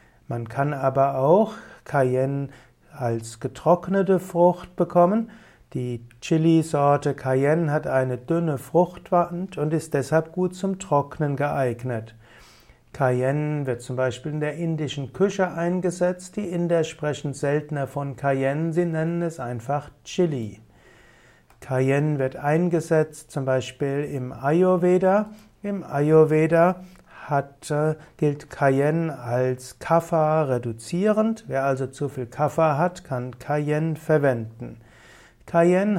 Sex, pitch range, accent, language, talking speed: male, 130-170 Hz, German, German, 110 wpm